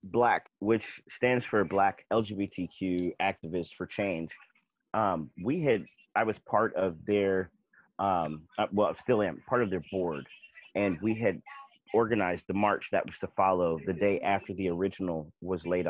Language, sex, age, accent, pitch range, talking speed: English, male, 30-49, American, 90-105 Hz, 160 wpm